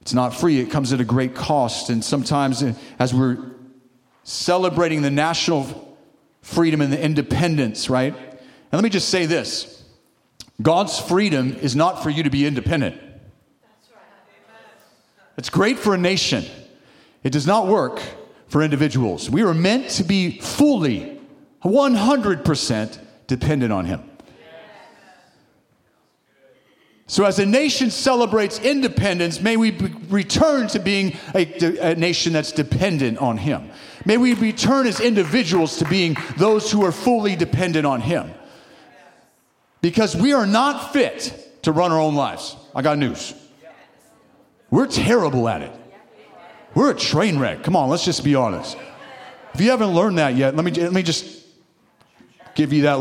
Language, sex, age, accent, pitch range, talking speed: English, male, 40-59, American, 140-205 Hz, 145 wpm